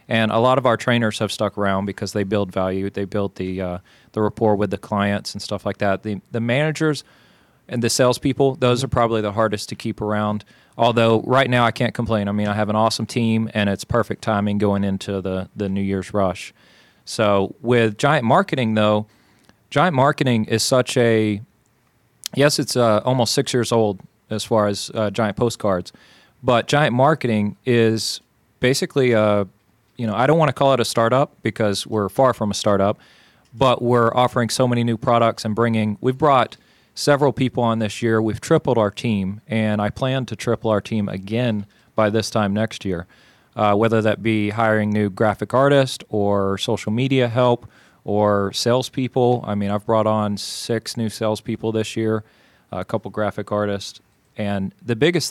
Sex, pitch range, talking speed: male, 105-120 Hz, 190 wpm